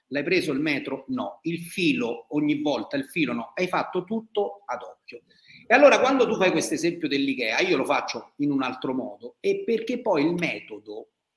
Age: 40-59